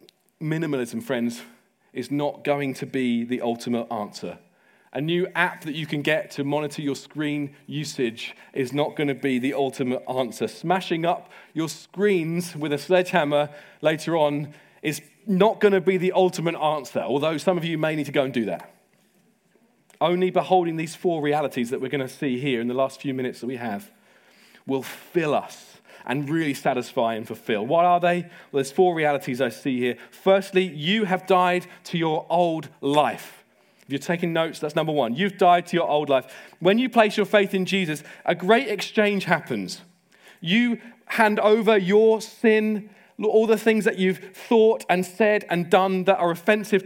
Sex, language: male, English